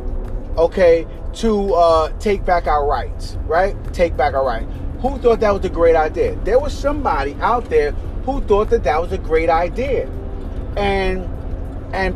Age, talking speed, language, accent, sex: 30-49, 170 wpm, English, American, male